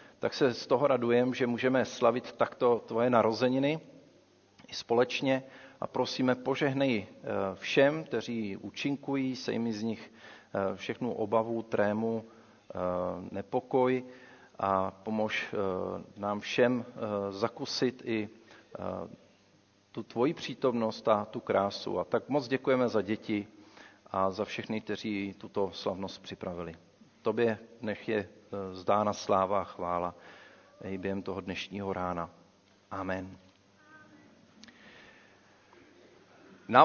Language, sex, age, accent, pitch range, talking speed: Czech, male, 40-59, native, 105-135 Hz, 105 wpm